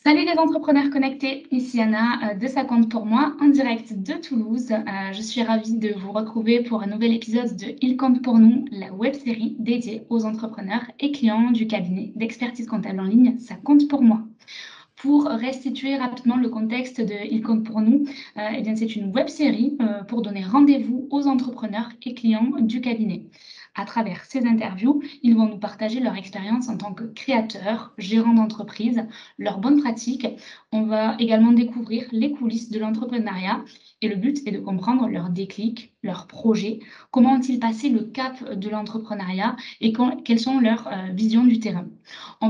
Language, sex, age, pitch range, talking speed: French, female, 20-39, 220-250 Hz, 195 wpm